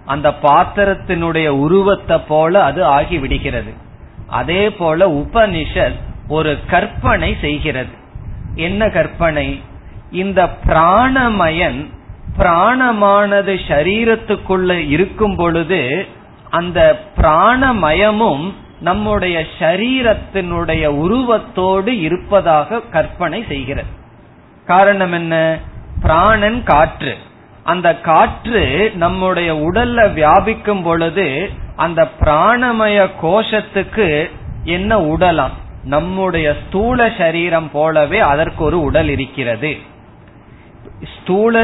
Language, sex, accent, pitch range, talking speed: Tamil, male, native, 155-205 Hz, 75 wpm